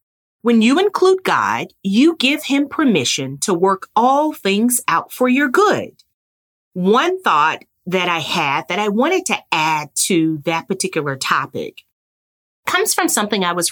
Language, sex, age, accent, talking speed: English, female, 40-59, American, 155 wpm